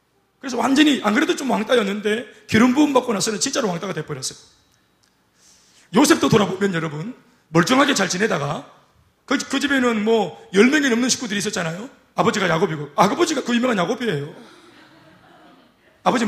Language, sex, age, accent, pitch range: Korean, male, 30-49, native, 200-265 Hz